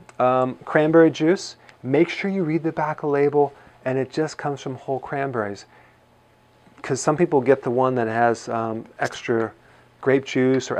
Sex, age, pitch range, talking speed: male, 40-59, 120-145 Hz, 170 wpm